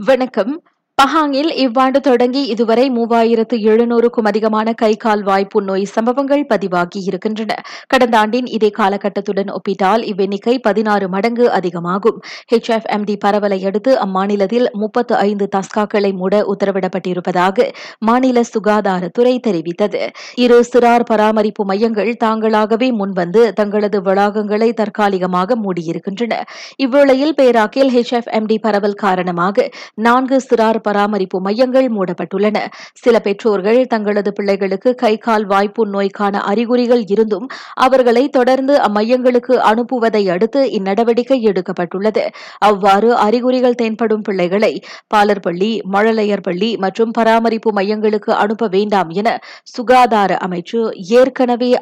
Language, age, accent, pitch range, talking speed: Tamil, 30-49, native, 200-240 Hz, 105 wpm